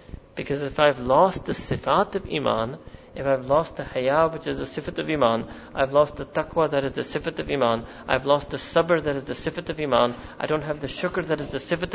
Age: 40-59